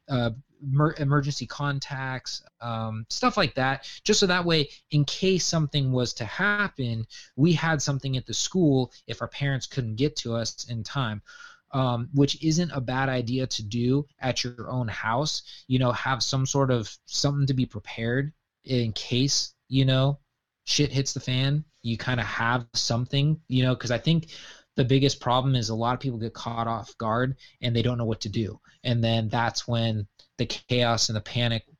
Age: 20-39